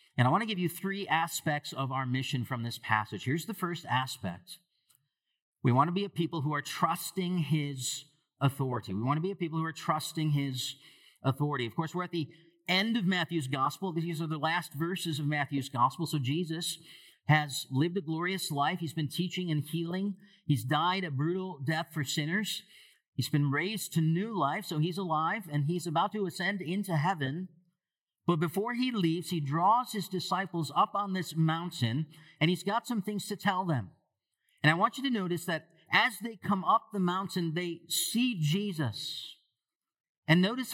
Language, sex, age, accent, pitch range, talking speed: English, male, 50-69, American, 145-180 Hz, 190 wpm